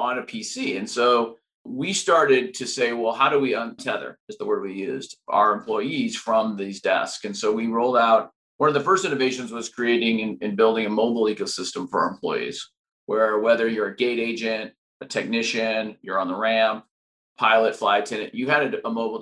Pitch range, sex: 105-130 Hz, male